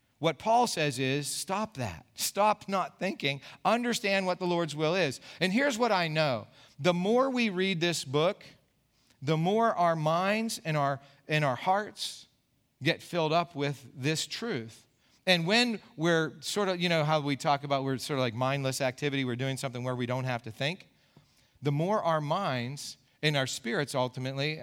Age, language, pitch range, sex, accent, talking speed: 40-59, English, 135-170 Hz, male, American, 185 wpm